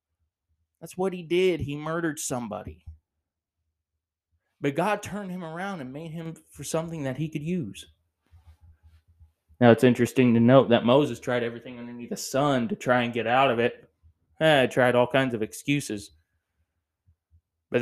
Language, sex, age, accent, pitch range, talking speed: English, male, 20-39, American, 90-150 Hz, 160 wpm